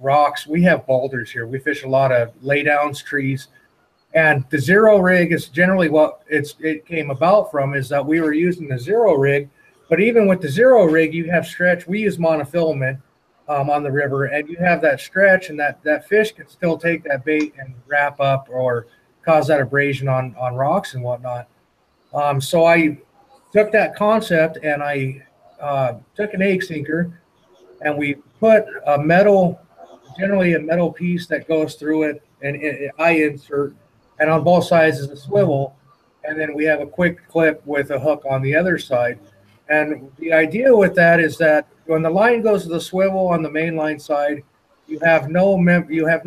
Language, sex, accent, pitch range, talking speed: English, male, American, 140-170 Hz, 195 wpm